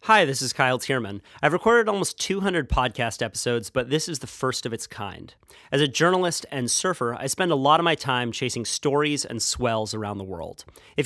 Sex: male